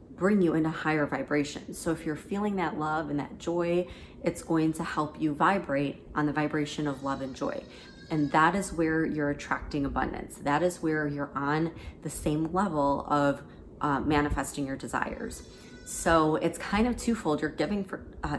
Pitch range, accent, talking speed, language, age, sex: 150-175 Hz, American, 185 wpm, English, 30-49, female